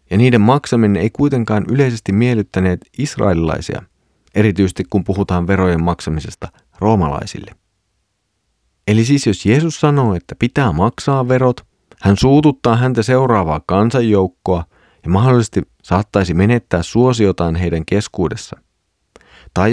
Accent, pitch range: native, 95-120 Hz